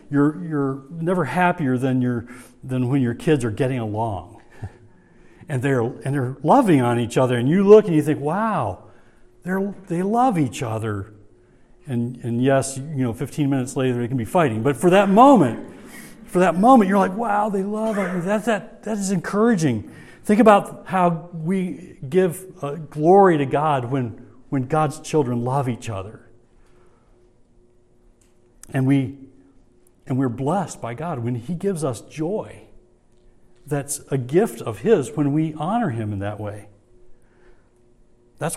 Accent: American